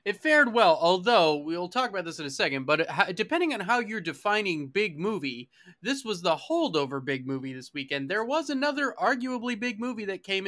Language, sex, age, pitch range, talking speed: English, male, 20-39, 145-195 Hz, 205 wpm